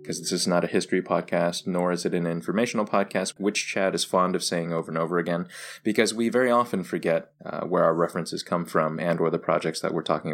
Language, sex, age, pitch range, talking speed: English, male, 20-39, 85-100 Hz, 240 wpm